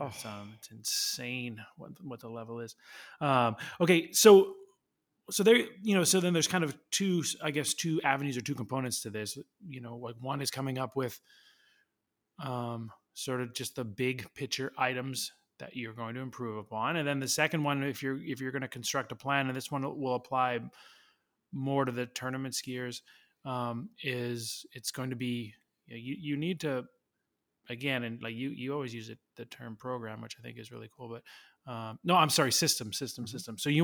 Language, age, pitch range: English, 20-39, 125-160 Hz